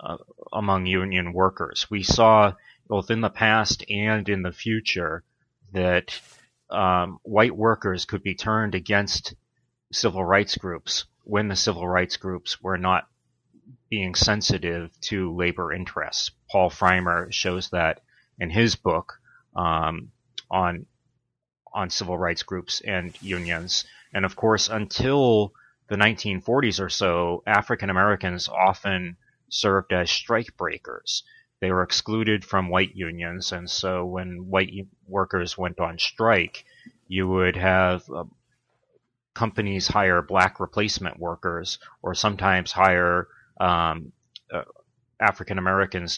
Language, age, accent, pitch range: English, 30-49, American, 90-105 Hz